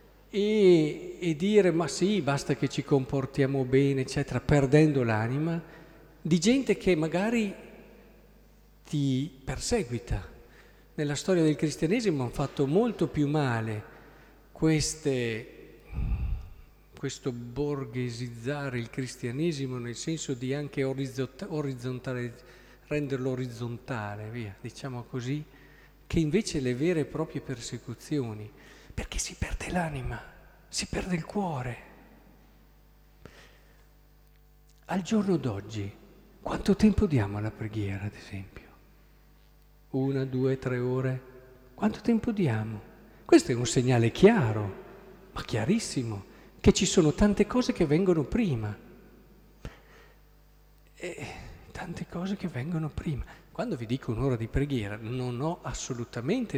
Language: Italian